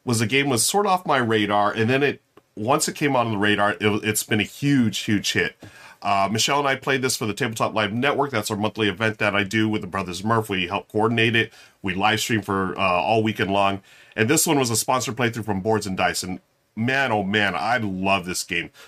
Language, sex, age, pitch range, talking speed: English, male, 40-59, 110-145 Hz, 255 wpm